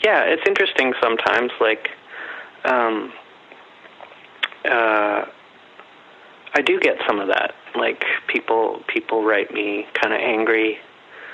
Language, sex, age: English, male, 30-49